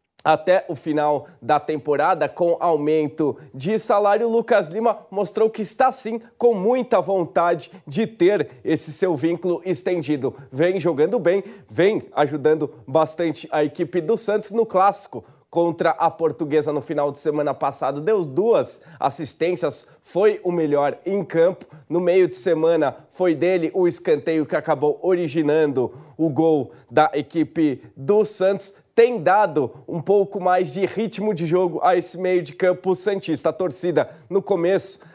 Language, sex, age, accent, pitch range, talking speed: English, male, 20-39, Brazilian, 160-200 Hz, 150 wpm